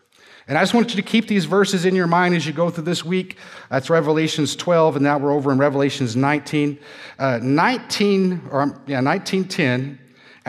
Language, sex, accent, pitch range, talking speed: English, male, American, 150-205 Hz, 190 wpm